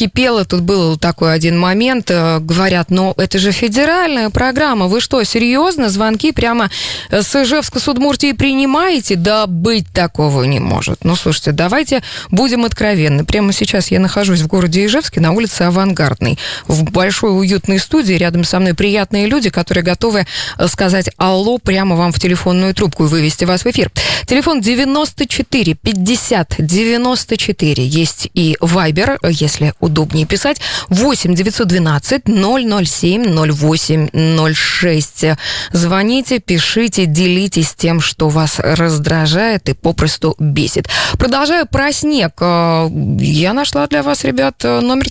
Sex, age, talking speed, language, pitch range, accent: female, 20-39, 125 wpm, Russian, 160-225 Hz, native